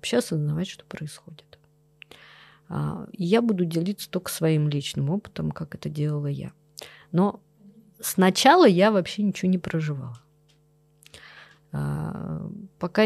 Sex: female